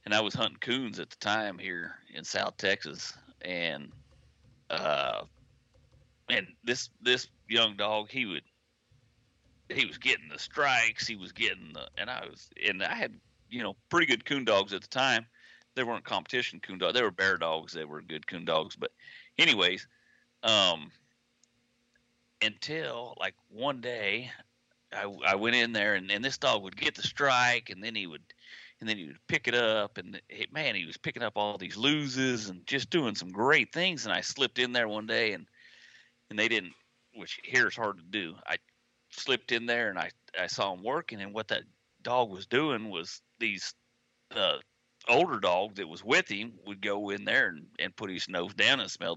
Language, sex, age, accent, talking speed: English, male, 40-59, American, 195 wpm